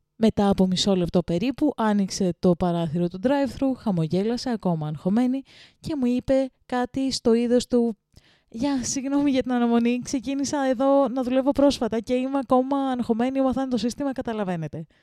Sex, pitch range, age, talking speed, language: female, 195-280 Hz, 20-39, 150 wpm, Greek